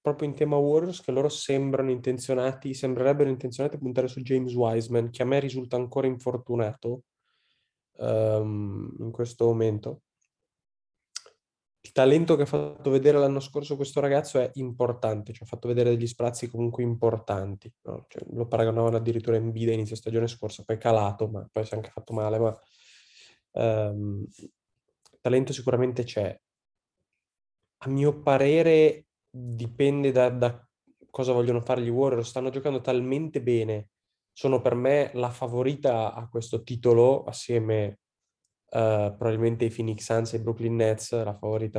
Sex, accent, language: male, native, Italian